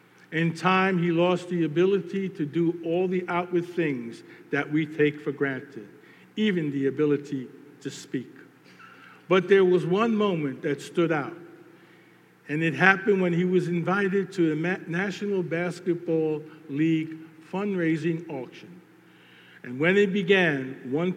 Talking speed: 140 wpm